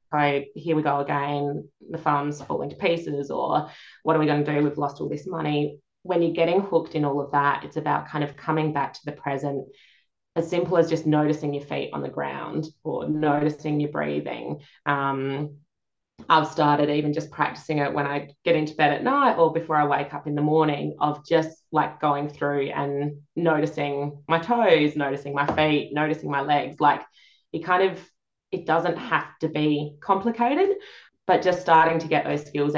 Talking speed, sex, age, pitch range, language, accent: 195 wpm, female, 20-39, 145-160 Hz, English, Australian